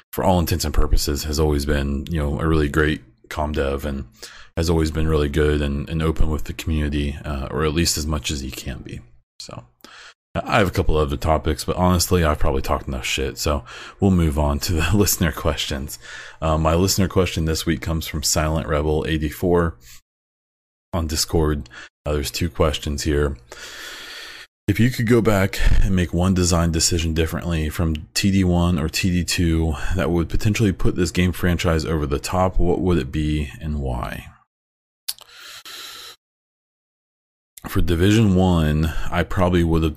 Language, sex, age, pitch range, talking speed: English, male, 30-49, 75-90 Hz, 175 wpm